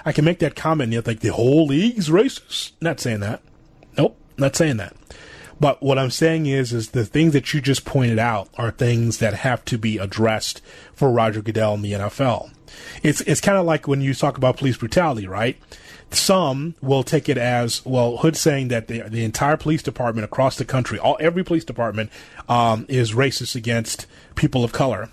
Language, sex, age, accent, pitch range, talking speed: English, male, 30-49, American, 115-145 Hz, 205 wpm